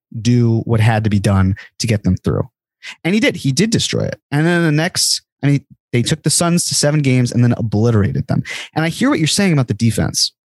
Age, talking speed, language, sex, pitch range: 30-49, 245 wpm, English, male, 115-160 Hz